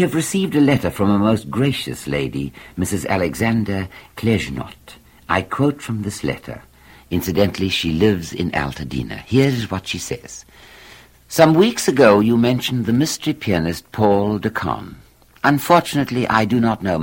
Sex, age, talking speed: male, 60-79, 150 wpm